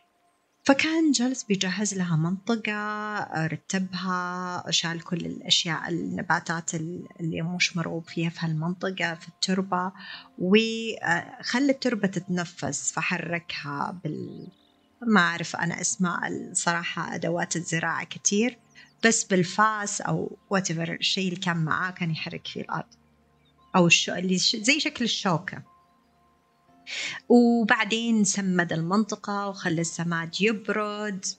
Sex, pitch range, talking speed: female, 165-210 Hz, 105 wpm